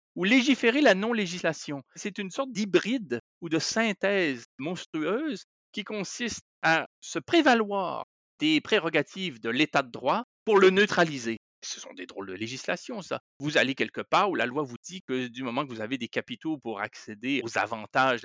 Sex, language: male, French